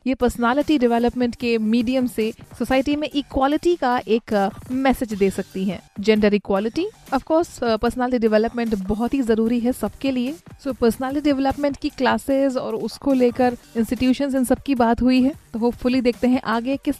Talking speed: 170 wpm